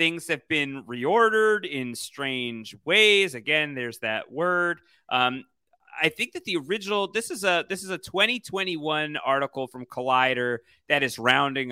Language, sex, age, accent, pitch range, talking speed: English, male, 30-49, American, 130-185 Hz, 155 wpm